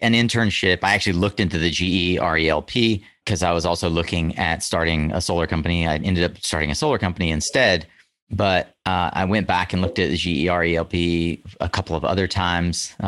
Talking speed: 195 wpm